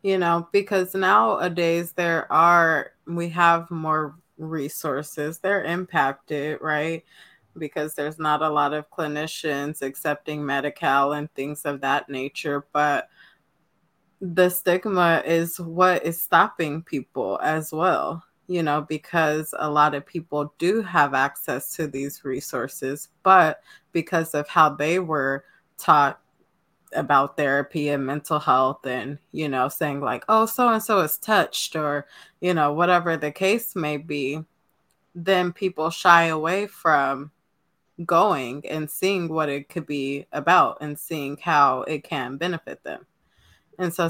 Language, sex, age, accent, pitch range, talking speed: English, female, 20-39, American, 150-180 Hz, 140 wpm